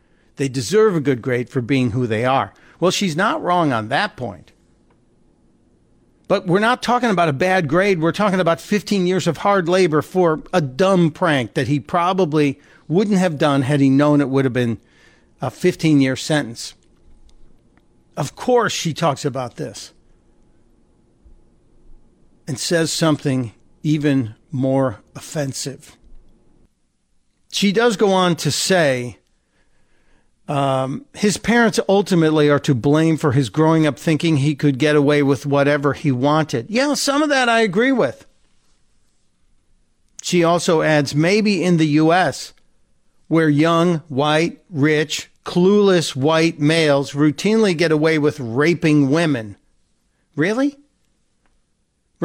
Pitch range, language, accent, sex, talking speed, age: 140-185 Hz, English, American, male, 140 wpm, 50-69